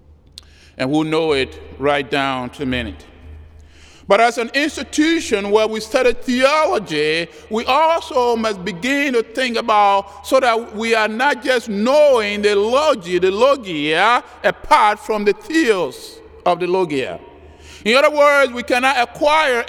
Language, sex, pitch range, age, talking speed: English, male, 190-280 Hz, 50-69, 145 wpm